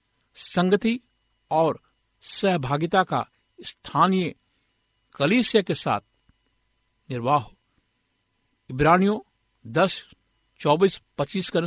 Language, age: Hindi, 60-79